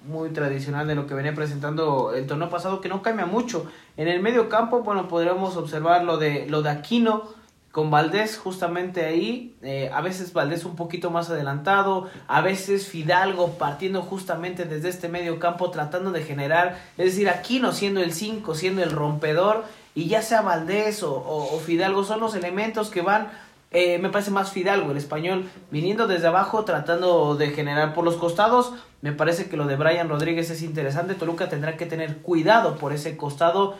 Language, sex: Spanish, male